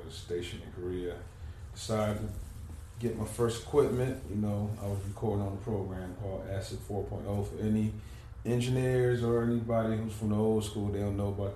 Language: English